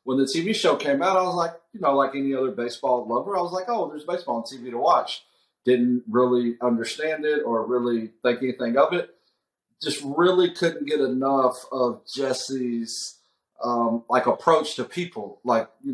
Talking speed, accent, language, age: 190 wpm, American, English, 40-59